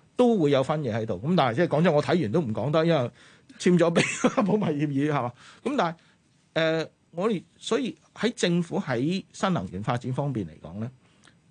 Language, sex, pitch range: Chinese, male, 125-170 Hz